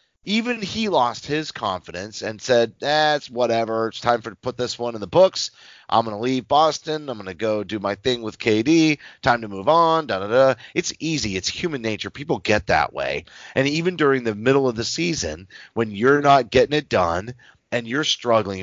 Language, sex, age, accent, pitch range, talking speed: English, male, 30-49, American, 110-145 Hz, 215 wpm